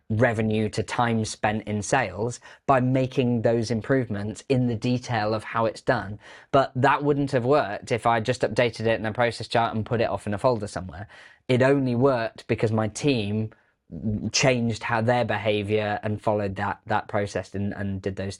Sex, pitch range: male, 105-125 Hz